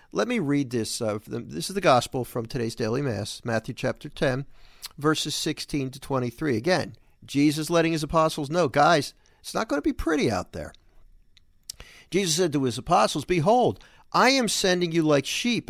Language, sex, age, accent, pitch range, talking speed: English, male, 50-69, American, 115-165 Hz, 175 wpm